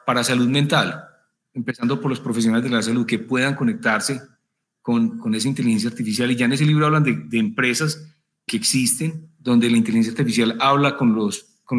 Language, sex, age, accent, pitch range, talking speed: Spanish, male, 30-49, Colombian, 120-155 Hz, 190 wpm